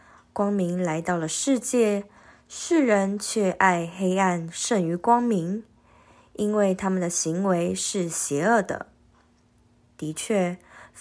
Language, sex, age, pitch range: Chinese, female, 20-39, 175-215 Hz